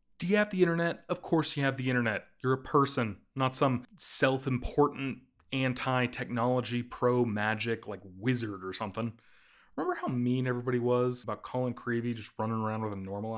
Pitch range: 120-180 Hz